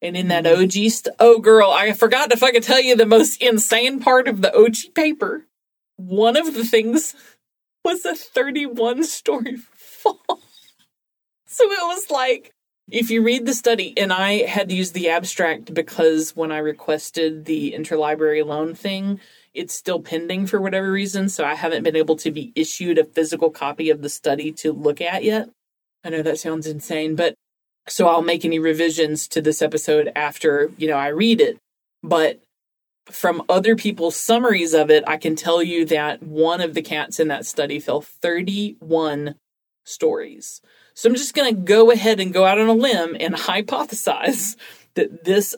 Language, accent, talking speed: English, American, 180 wpm